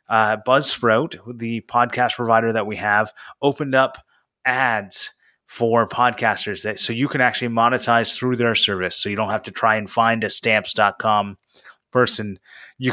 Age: 30-49